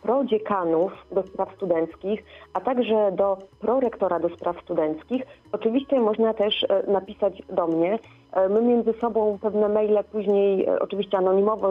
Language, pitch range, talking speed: Polish, 190-215 Hz, 130 wpm